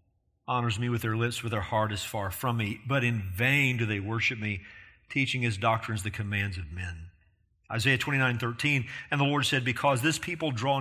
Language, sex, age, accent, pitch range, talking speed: English, male, 40-59, American, 110-155 Hz, 210 wpm